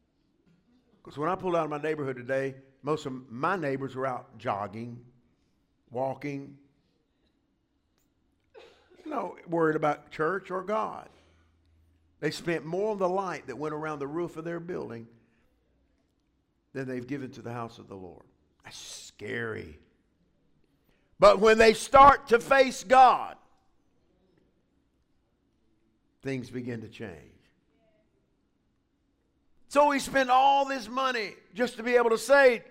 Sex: male